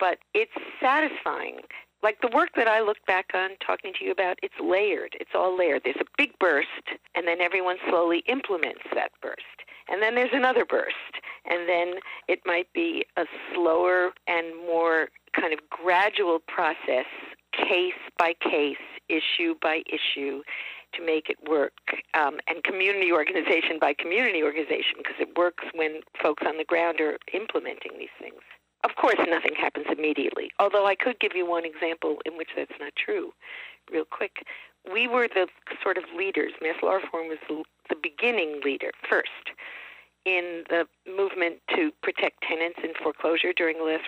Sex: female